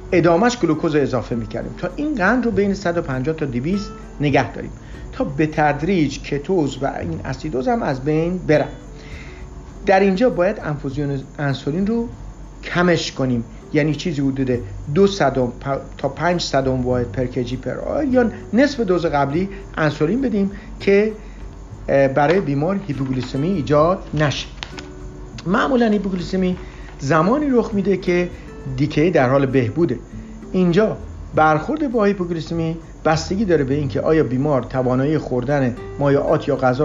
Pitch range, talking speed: 130-180 Hz, 130 wpm